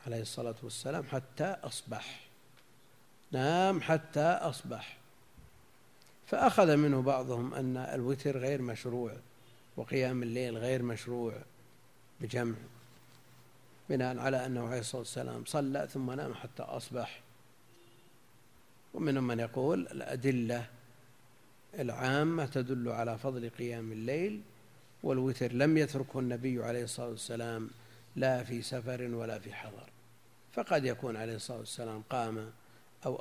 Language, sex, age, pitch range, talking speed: Arabic, male, 50-69, 120-140 Hz, 110 wpm